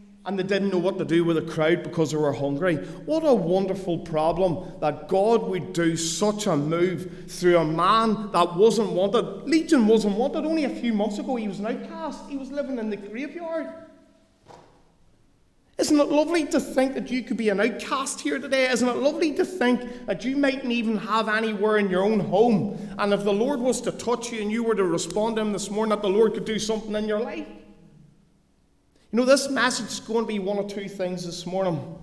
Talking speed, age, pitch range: 220 wpm, 30-49, 140-220 Hz